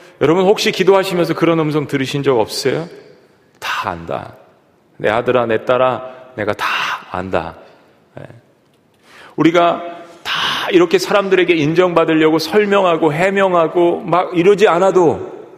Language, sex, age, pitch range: Korean, male, 40-59, 130-175 Hz